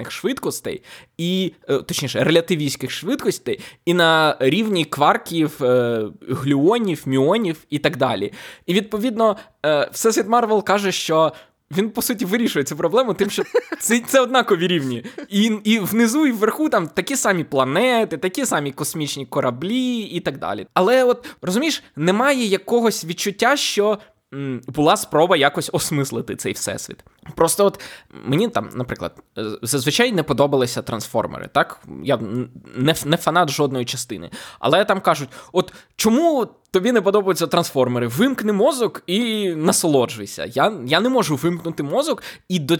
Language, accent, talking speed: Ukrainian, native, 135 wpm